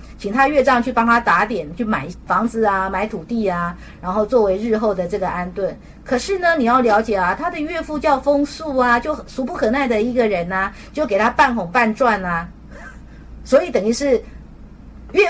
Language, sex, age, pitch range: Chinese, female, 50-69, 205-260 Hz